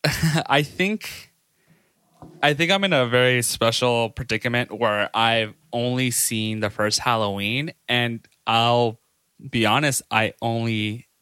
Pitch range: 105-140 Hz